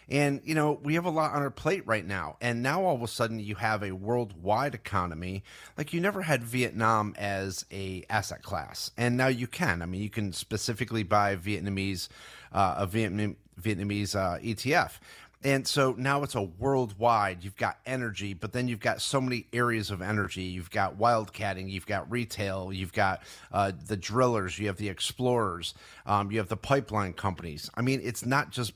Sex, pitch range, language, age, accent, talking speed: male, 100-125 Hz, English, 30-49, American, 190 wpm